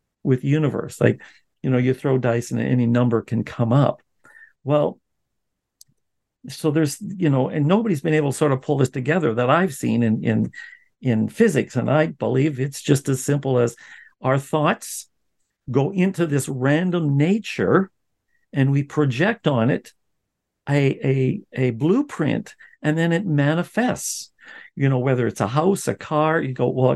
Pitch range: 130-160 Hz